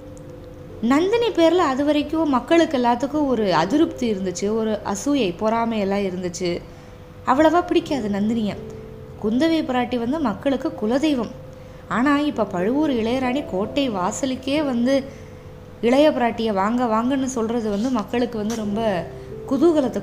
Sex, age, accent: female, 20-39, native